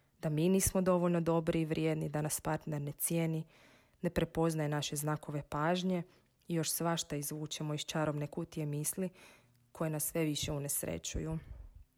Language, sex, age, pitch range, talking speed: Croatian, female, 30-49, 150-175 Hz, 150 wpm